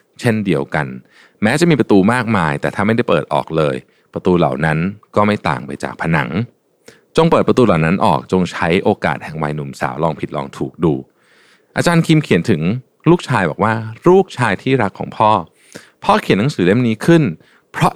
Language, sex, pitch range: Thai, male, 85-140 Hz